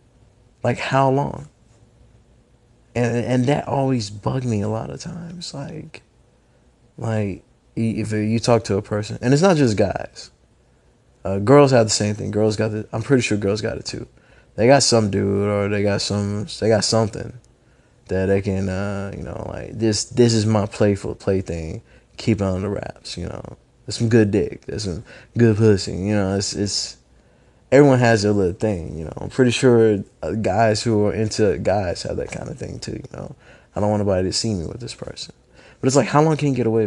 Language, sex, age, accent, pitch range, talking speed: English, male, 20-39, American, 100-125 Hz, 205 wpm